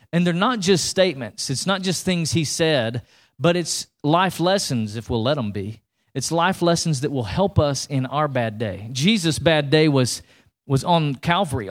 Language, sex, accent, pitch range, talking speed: English, male, American, 135-180 Hz, 195 wpm